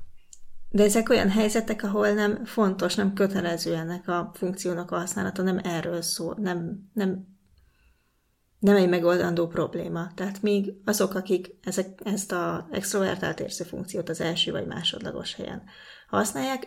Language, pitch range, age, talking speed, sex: Hungarian, 170-200 Hz, 30-49, 140 wpm, female